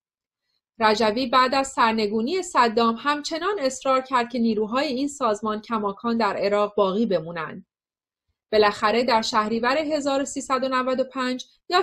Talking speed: 110 wpm